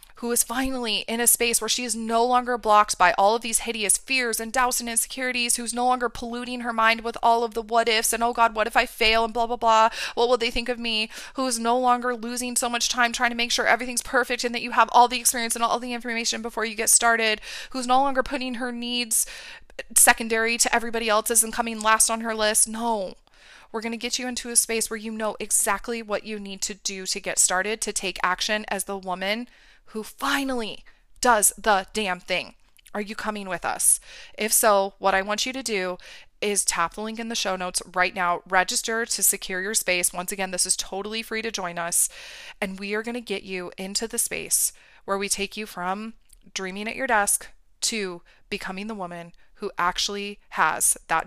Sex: female